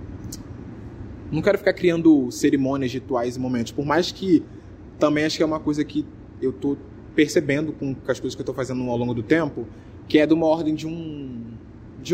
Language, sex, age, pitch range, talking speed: Portuguese, male, 20-39, 115-145 Hz, 200 wpm